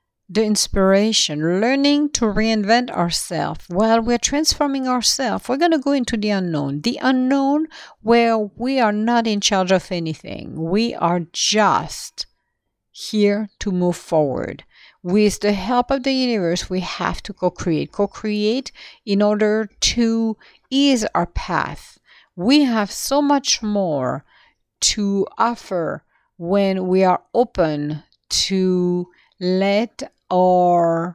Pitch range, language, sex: 180-230 Hz, English, female